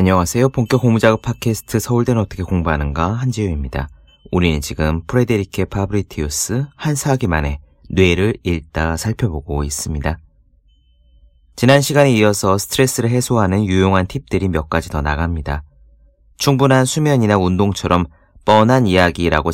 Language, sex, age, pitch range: Korean, male, 30-49, 75-115 Hz